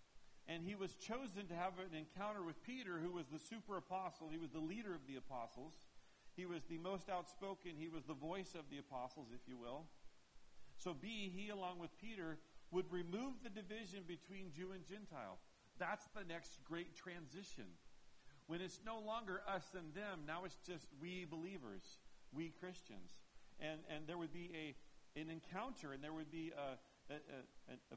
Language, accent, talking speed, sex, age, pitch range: English, American, 180 wpm, male, 50-69, 145-190 Hz